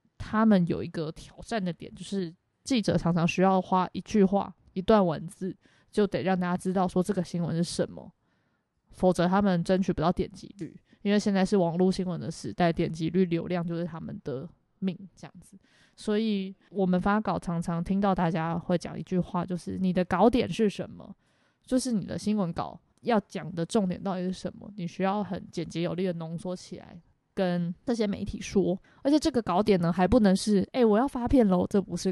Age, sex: 20-39, female